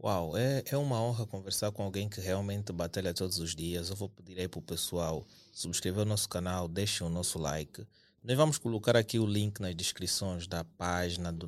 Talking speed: 210 wpm